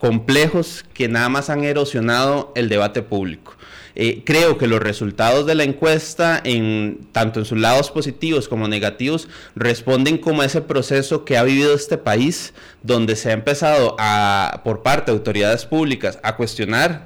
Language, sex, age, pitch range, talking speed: Spanish, male, 30-49, 120-150 Hz, 165 wpm